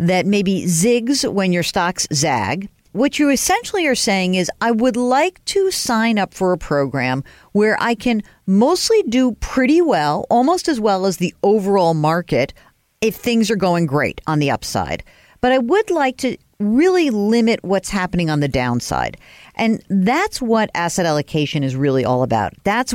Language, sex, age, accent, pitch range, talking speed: English, female, 50-69, American, 155-245 Hz, 175 wpm